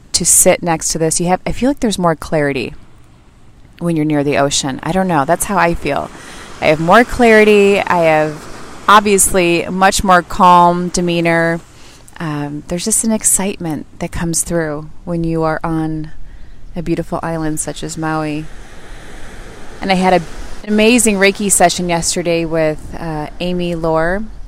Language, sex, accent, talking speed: English, female, American, 165 wpm